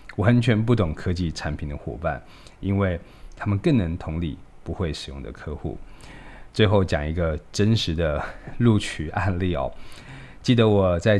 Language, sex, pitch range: Chinese, male, 85-110 Hz